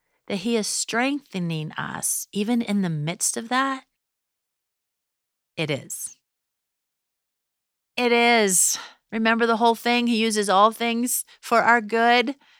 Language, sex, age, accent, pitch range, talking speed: English, female, 40-59, American, 170-235 Hz, 125 wpm